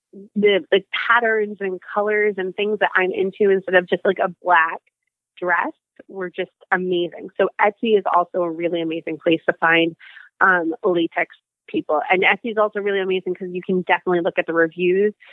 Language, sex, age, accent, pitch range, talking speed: English, female, 20-39, American, 185-230 Hz, 185 wpm